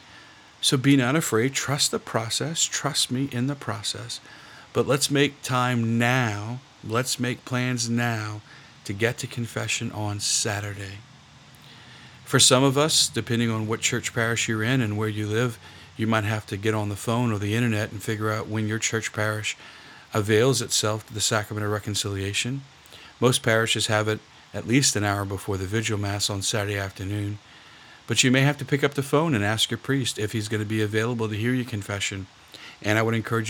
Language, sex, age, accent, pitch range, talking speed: English, male, 50-69, American, 105-125 Hz, 195 wpm